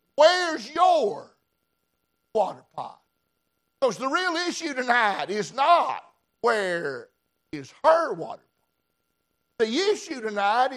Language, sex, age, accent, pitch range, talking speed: English, male, 60-79, American, 220-300 Hz, 105 wpm